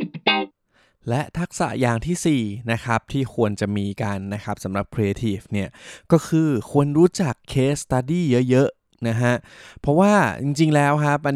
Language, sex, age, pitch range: Thai, male, 20-39, 110-140 Hz